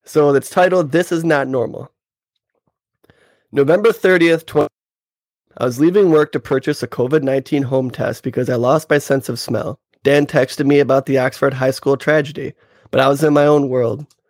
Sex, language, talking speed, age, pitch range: male, English, 180 wpm, 20-39, 130-155 Hz